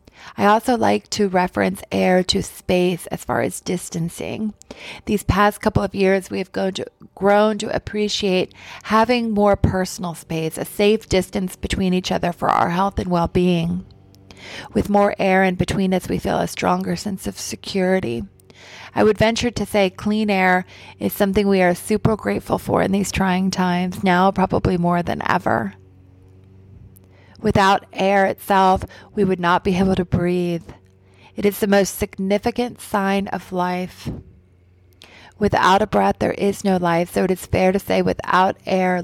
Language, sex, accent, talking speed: English, female, American, 165 wpm